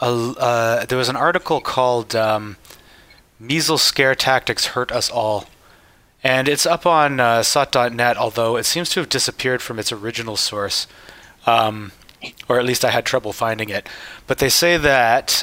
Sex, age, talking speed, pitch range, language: male, 30-49, 165 wpm, 115-140 Hz, English